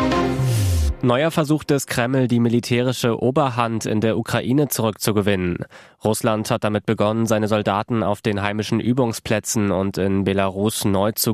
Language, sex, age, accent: German, male, 20-39, German